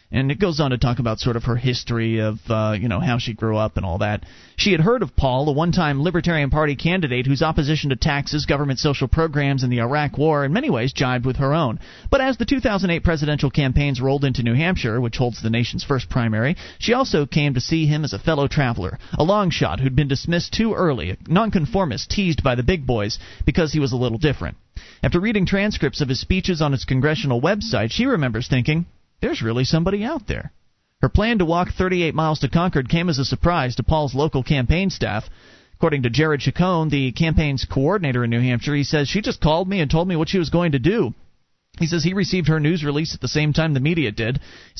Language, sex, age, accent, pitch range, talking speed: English, male, 30-49, American, 130-170 Hz, 230 wpm